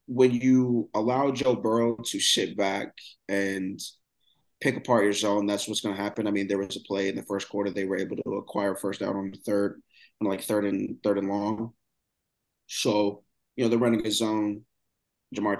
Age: 20-39